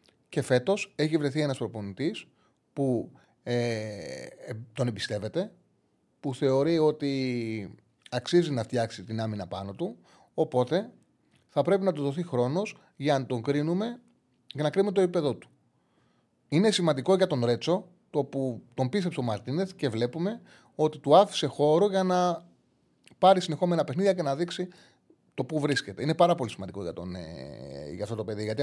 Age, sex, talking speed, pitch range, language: 30-49, male, 160 wpm, 120-175 Hz, Greek